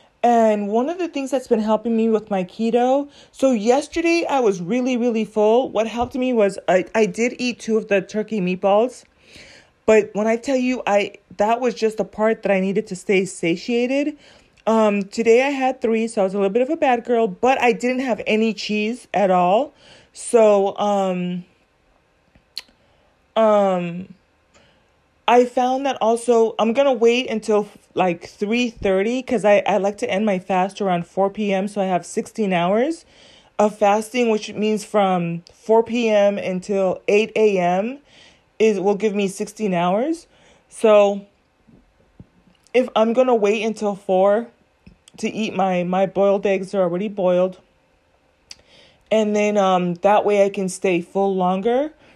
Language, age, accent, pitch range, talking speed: English, 30-49, American, 195-235 Hz, 170 wpm